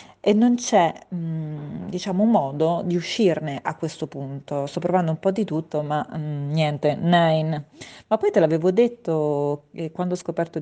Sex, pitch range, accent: female, 150-180 Hz, native